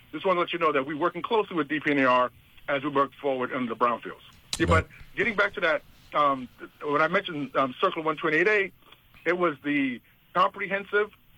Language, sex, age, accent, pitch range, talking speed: English, male, 50-69, American, 145-180 Hz, 190 wpm